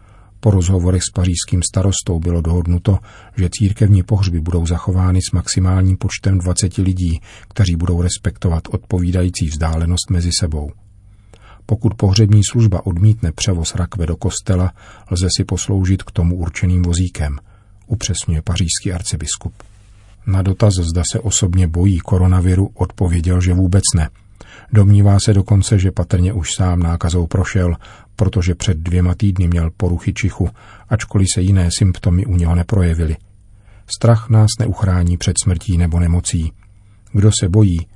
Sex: male